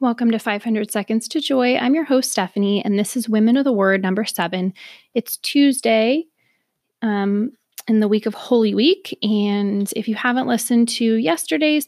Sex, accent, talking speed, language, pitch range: female, American, 175 wpm, English, 200-250 Hz